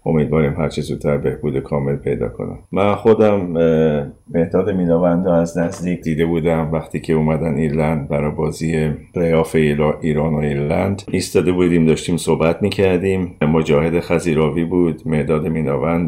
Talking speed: 140 wpm